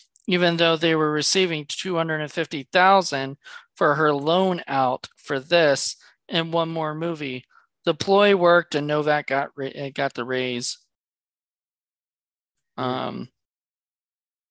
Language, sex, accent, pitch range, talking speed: English, male, American, 140-185 Hz, 110 wpm